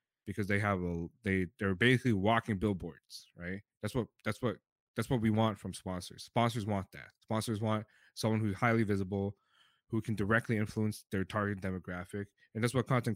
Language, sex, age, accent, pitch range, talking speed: English, male, 20-39, American, 100-120 Hz, 180 wpm